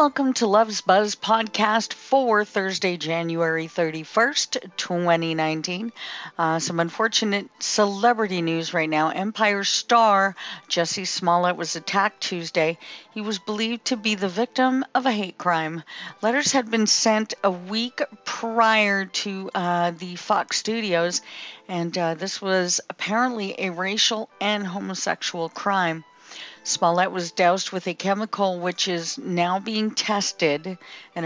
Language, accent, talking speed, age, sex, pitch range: English, American, 130 wpm, 50-69, female, 170-205 Hz